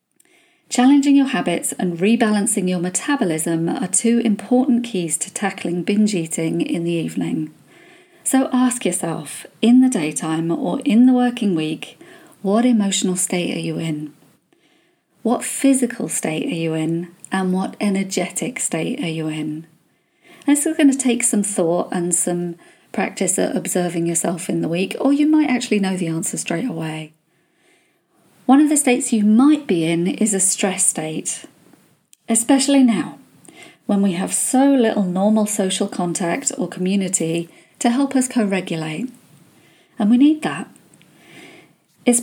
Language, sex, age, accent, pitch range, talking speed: English, female, 40-59, British, 170-245 Hz, 150 wpm